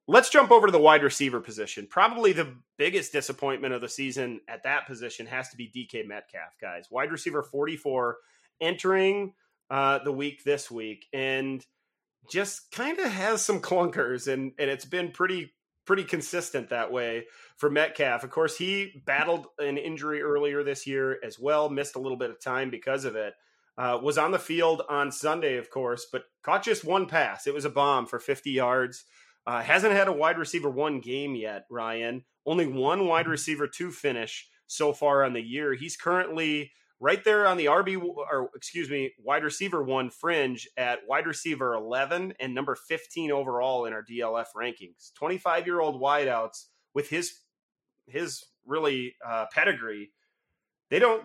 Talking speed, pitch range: 175 wpm, 130-170 Hz